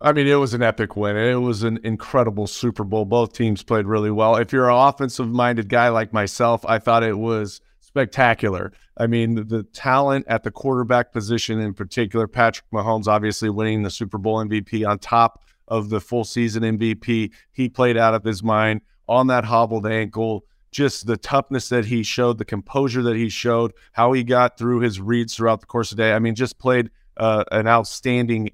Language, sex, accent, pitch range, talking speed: English, male, American, 110-125 Hz, 200 wpm